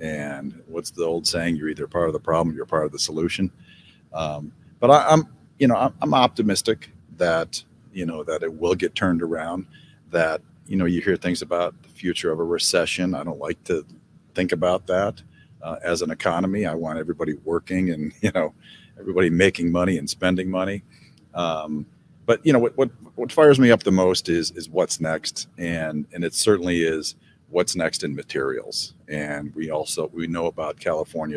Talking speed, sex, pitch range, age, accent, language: 195 wpm, male, 80-110 Hz, 40-59, American, English